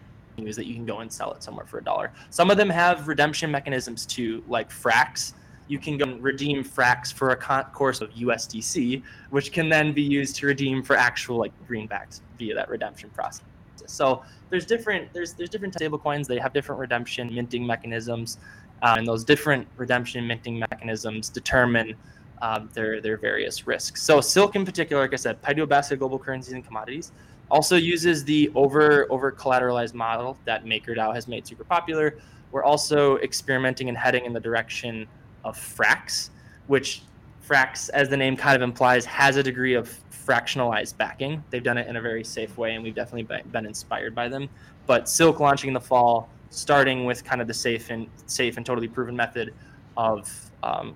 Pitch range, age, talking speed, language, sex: 115-145 Hz, 20-39, 185 wpm, English, male